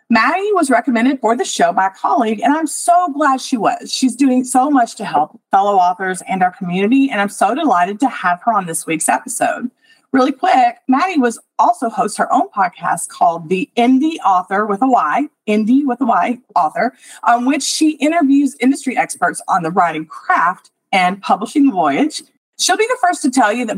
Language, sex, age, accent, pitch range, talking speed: English, female, 40-59, American, 205-285 Hz, 200 wpm